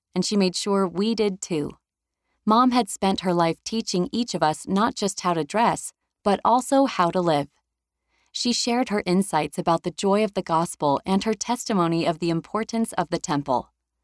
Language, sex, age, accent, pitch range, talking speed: English, female, 30-49, American, 170-220 Hz, 190 wpm